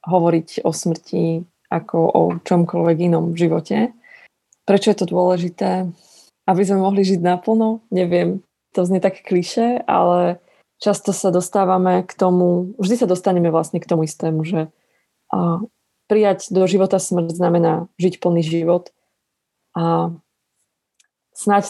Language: Slovak